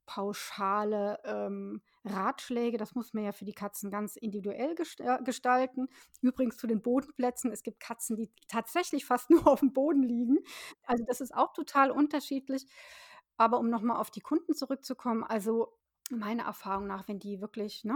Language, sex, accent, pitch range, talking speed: German, female, German, 215-255 Hz, 160 wpm